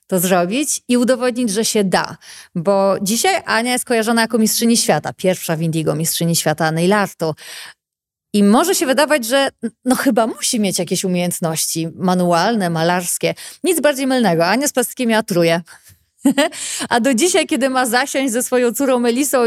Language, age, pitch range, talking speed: Polish, 30-49, 185-250 Hz, 155 wpm